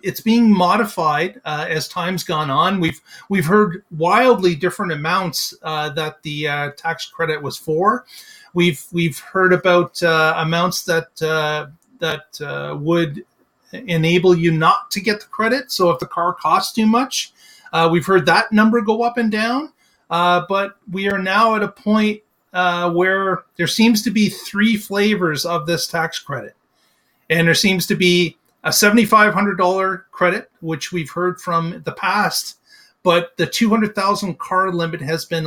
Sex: male